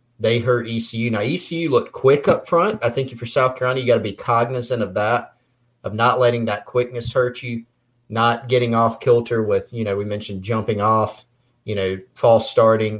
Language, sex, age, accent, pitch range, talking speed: English, male, 30-49, American, 105-120 Hz, 205 wpm